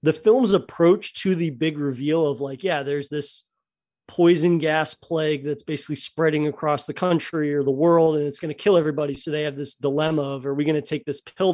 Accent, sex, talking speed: American, male, 225 wpm